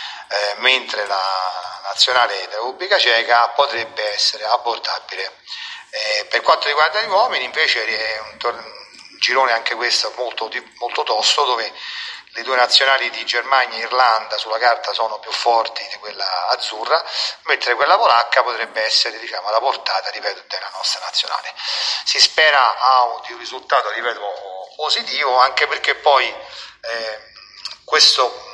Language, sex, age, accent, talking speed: Italian, male, 40-59, native, 145 wpm